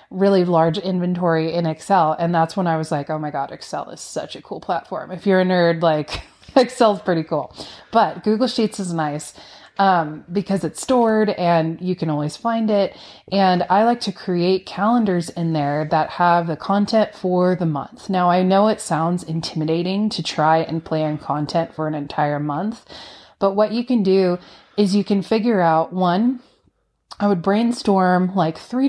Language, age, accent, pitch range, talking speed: English, 20-39, American, 160-195 Hz, 185 wpm